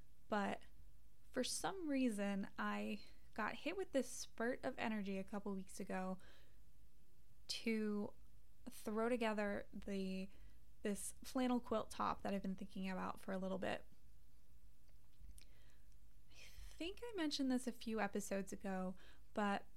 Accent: American